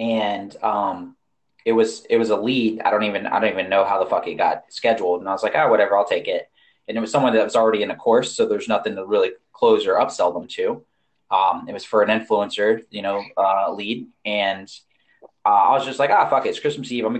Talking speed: 265 wpm